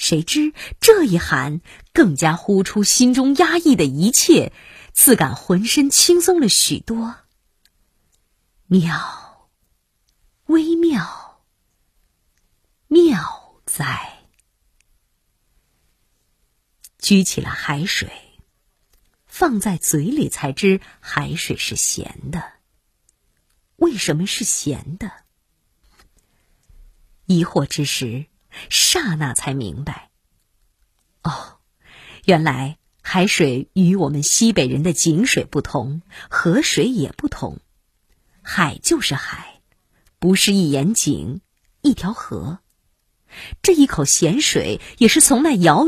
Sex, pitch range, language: female, 140-235 Hz, Chinese